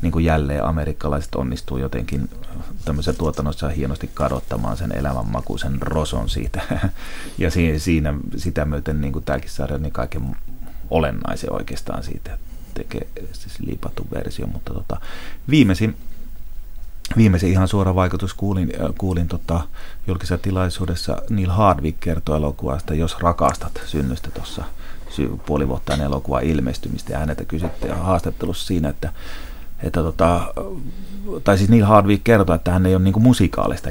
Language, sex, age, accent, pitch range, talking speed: Finnish, male, 30-49, native, 75-95 Hz, 135 wpm